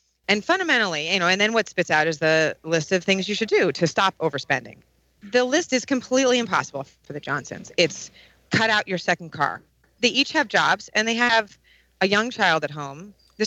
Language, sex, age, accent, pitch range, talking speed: English, female, 30-49, American, 150-195 Hz, 210 wpm